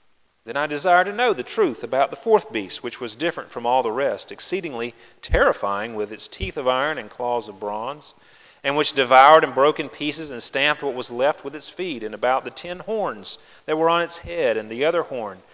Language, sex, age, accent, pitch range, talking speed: English, male, 40-59, American, 130-180 Hz, 225 wpm